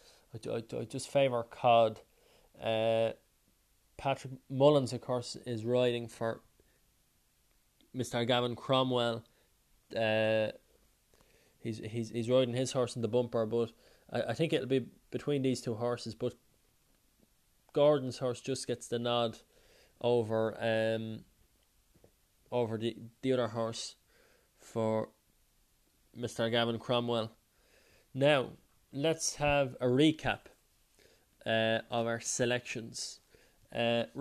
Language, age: English, 20-39